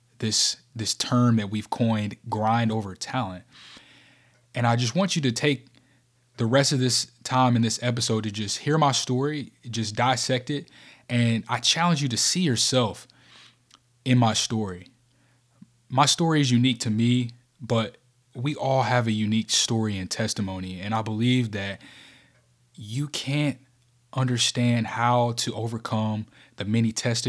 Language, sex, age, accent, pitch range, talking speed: English, male, 20-39, American, 110-130 Hz, 155 wpm